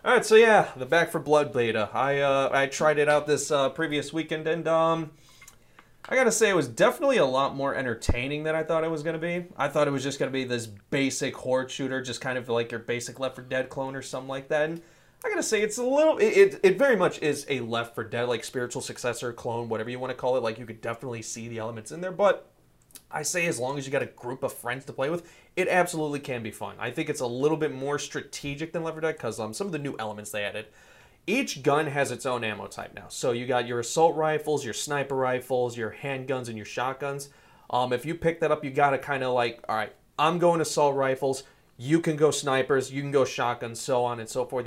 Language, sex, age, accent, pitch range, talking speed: English, male, 30-49, American, 125-160 Hz, 255 wpm